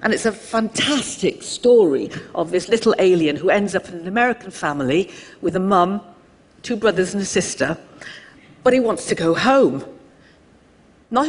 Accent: British